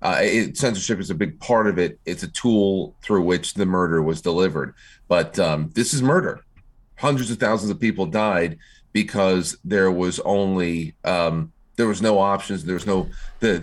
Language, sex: English, male